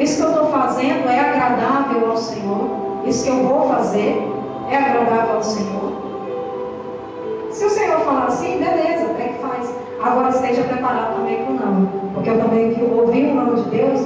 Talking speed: 180 wpm